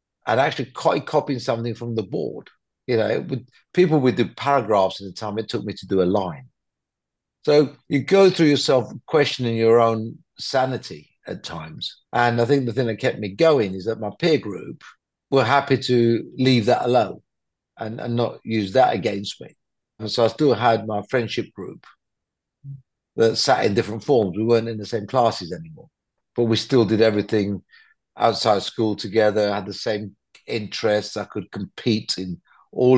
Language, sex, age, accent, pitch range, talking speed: English, male, 50-69, British, 105-130 Hz, 180 wpm